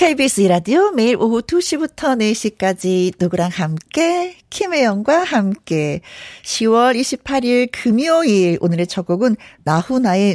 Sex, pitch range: female, 175-275 Hz